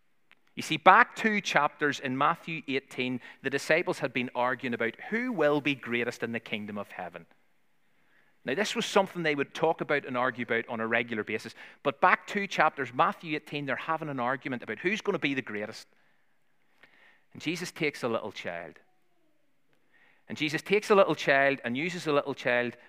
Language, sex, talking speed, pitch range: English, male, 185 wpm, 115-155 Hz